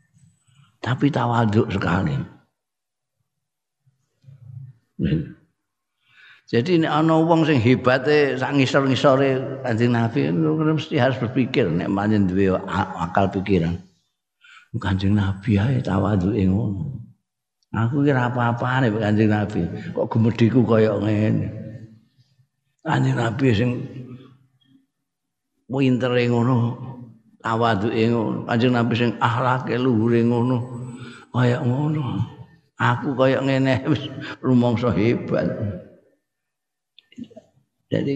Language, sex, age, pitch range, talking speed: Indonesian, male, 60-79, 105-135 Hz, 60 wpm